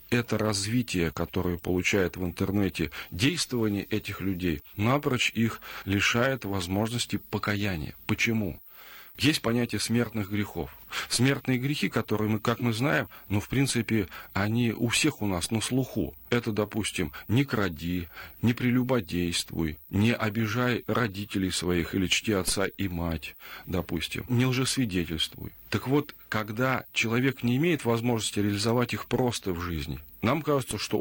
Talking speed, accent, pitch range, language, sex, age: 135 wpm, native, 95-125 Hz, Russian, male, 40-59